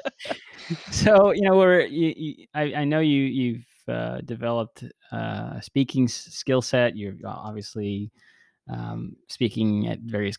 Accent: American